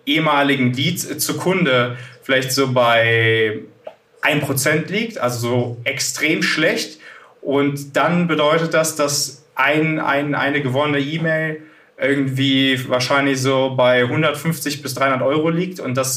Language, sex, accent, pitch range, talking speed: German, male, German, 125-150 Hz, 125 wpm